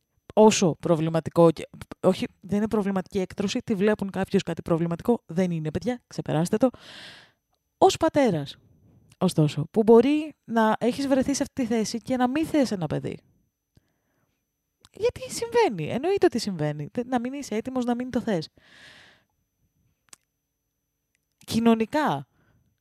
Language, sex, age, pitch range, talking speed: Greek, female, 20-39, 185-250 Hz, 130 wpm